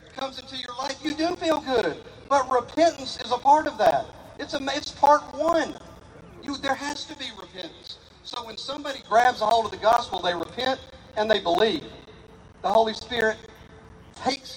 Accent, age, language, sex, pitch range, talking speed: American, 50-69, English, male, 180-245 Hz, 180 wpm